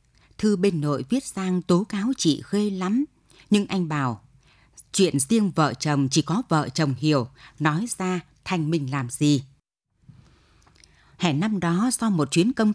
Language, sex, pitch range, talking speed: Vietnamese, female, 145-210 Hz, 165 wpm